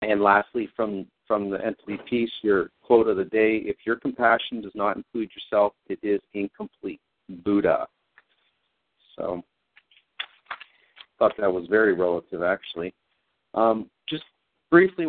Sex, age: male, 50-69